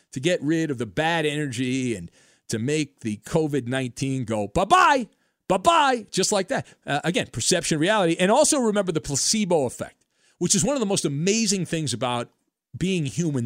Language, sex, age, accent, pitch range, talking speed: English, male, 40-59, American, 130-205 Hz, 175 wpm